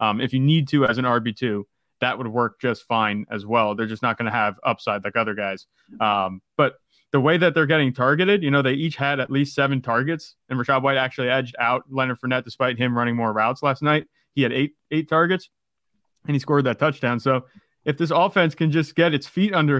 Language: English